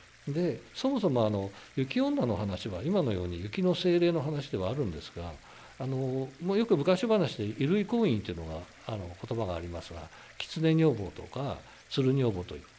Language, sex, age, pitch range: Japanese, male, 60-79, 105-155 Hz